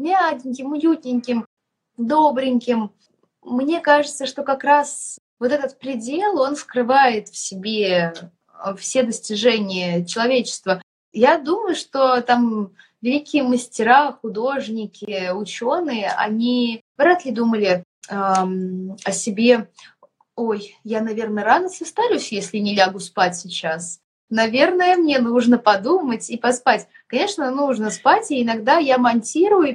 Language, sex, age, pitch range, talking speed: Russian, female, 20-39, 220-285 Hz, 115 wpm